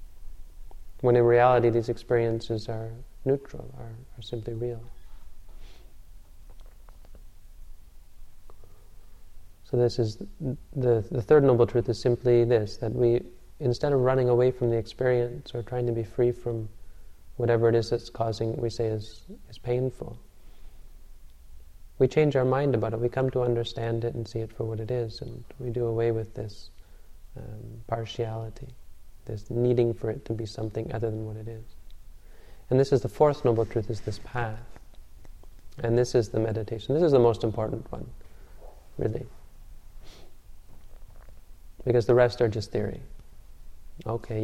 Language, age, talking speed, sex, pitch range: English, 30-49, 155 wpm, male, 100-120 Hz